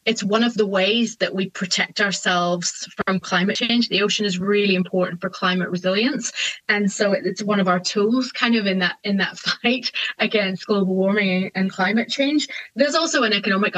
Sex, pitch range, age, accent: female, 185-230 Hz, 20-39, British